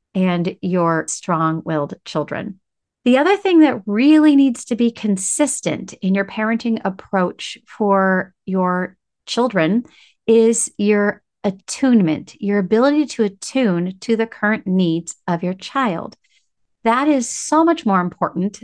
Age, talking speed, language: 40-59, 130 wpm, English